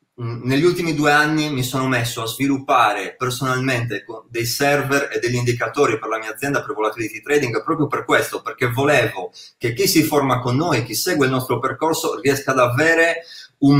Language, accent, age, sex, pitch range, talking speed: Italian, native, 30-49, male, 125-155 Hz, 185 wpm